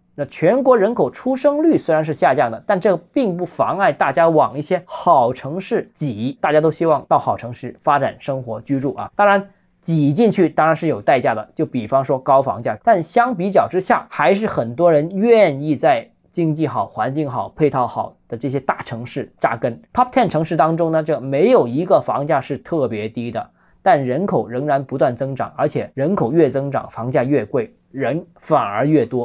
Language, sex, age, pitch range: Chinese, male, 20-39, 135-205 Hz